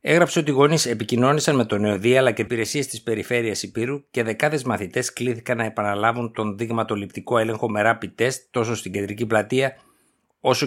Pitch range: 110-145 Hz